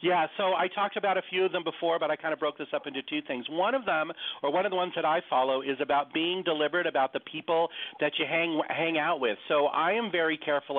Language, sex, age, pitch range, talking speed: English, male, 40-59, 140-175 Hz, 275 wpm